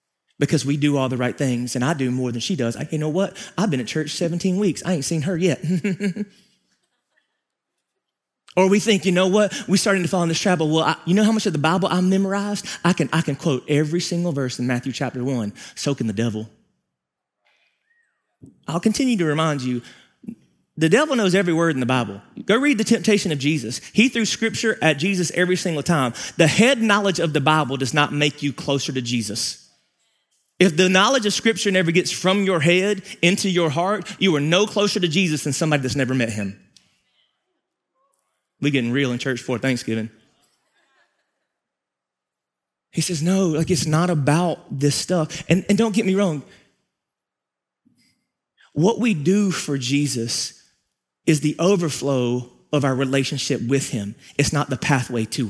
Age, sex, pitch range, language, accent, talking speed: 30-49, male, 135-195 Hz, English, American, 190 wpm